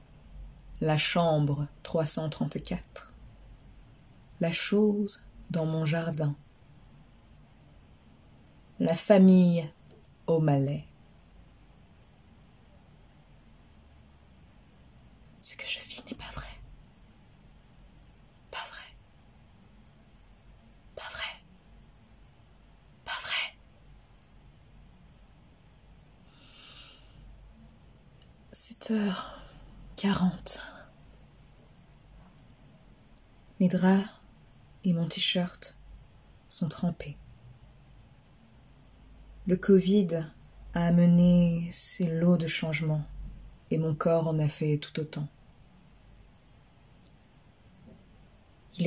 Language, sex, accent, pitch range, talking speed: French, female, French, 145-175 Hz, 65 wpm